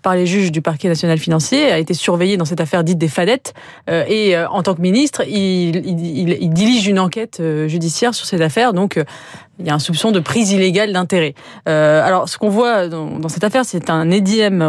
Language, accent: French, French